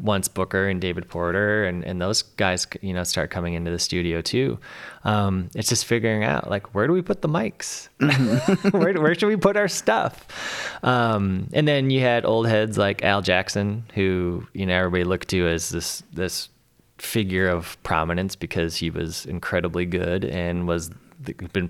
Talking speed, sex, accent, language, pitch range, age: 185 wpm, male, American, English, 90-105 Hz, 20-39